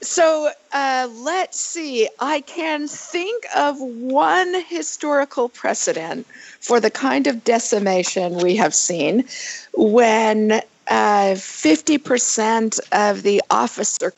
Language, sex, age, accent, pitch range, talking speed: English, female, 50-69, American, 185-265 Hz, 110 wpm